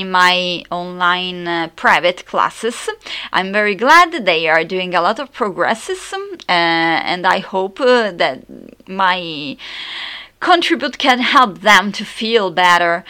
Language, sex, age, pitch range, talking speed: English, female, 30-49, 180-230 Hz, 135 wpm